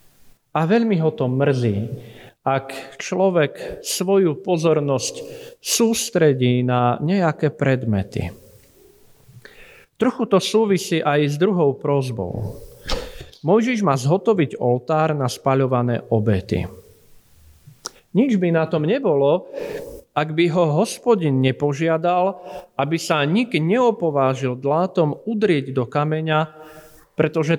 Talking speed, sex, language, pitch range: 100 wpm, male, Slovak, 130-180 Hz